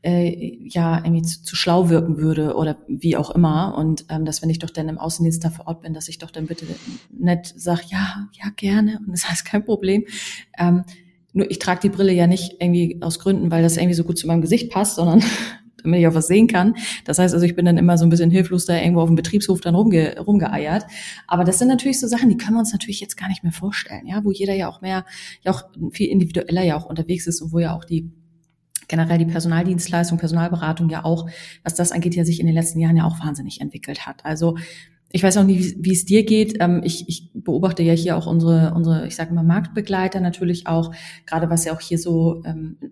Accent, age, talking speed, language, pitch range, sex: German, 30-49, 240 wpm, German, 165-185 Hz, female